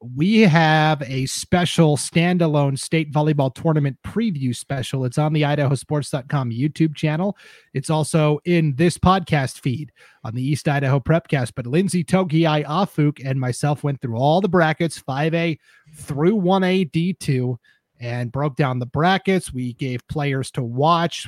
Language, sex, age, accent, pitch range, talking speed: English, male, 30-49, American, 135-165 Hz, 145 wpm